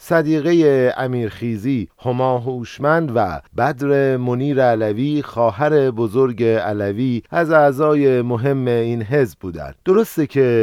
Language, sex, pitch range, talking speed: Persian, male, 115-140 Hz, 105 wpm